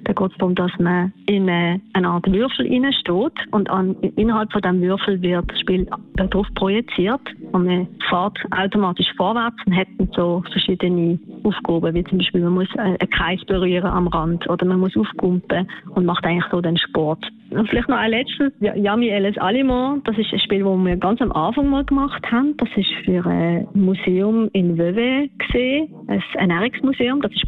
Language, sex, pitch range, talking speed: German, female, 180-210 Hz, 180 wpm